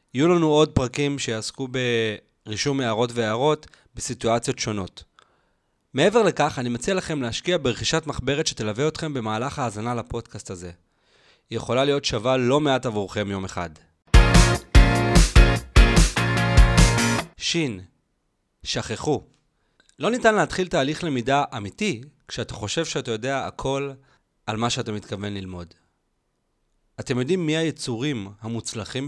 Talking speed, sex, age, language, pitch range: 115 wpm, male, 30-49, Hebrew, 110-145 Hz